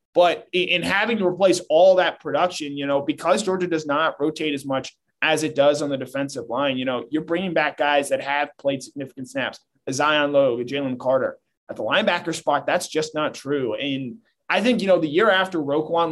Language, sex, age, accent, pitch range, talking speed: English, male, 20-39, American, 140-175 Hz, 210 wpm